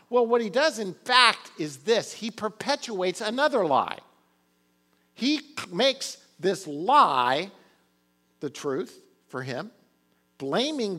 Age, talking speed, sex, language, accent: 50-69, 115 wpm, male, English, American